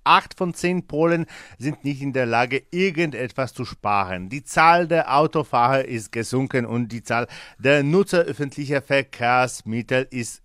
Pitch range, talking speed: 115-155 Hz, 150 wpm